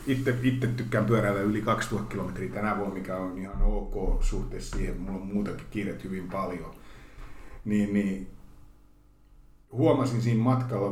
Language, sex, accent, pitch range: Finnish, male, native, 95-120 Hz